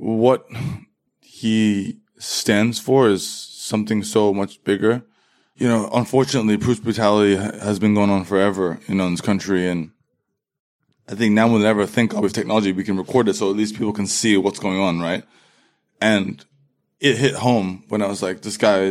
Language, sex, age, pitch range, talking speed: English, male, 20-39, 95-115 Hz, 180 wpm